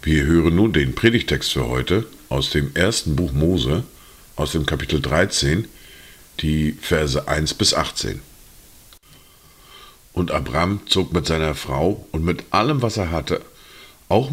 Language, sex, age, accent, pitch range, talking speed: German, male, 50-69, German, 75-90 Hz, 140 wpm